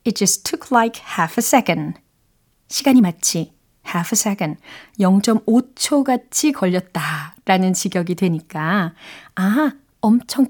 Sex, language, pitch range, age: female, Korean, 185-270 Hz, 30-49